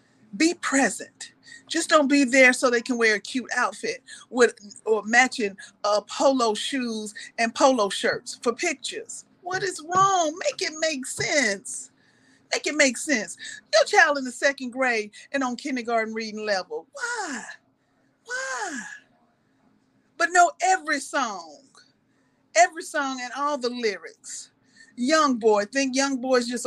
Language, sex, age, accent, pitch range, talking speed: English, female, 40-59, American, 240-325 Hz, 145 wpm